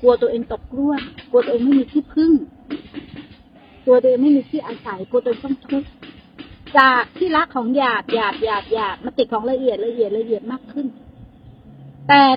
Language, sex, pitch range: Thai, female, 235-285 Hz